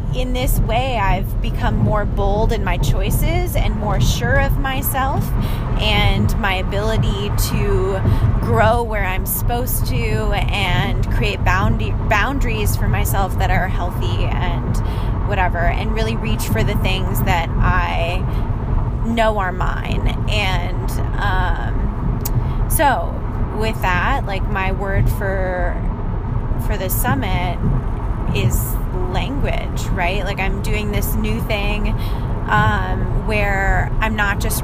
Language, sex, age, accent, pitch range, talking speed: English, female, 20-39, American, 105-115 Hz, 125 wpm